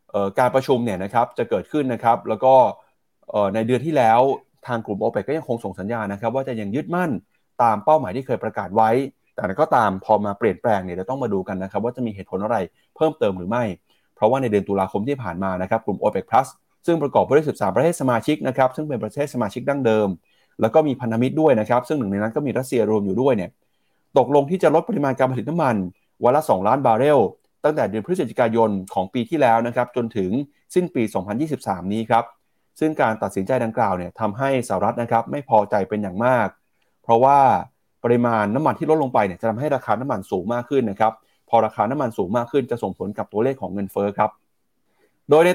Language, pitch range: Thai, 105-140 Hz